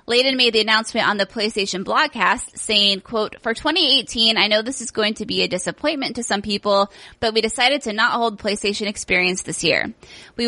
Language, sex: English, female